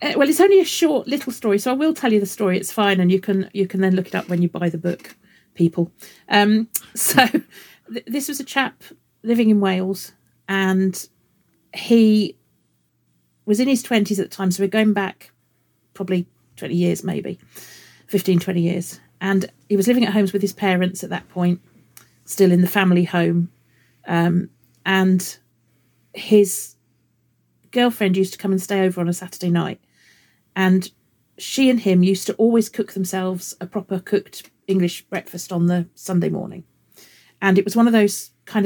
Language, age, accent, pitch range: English, 40-59, British, 175-205 Hz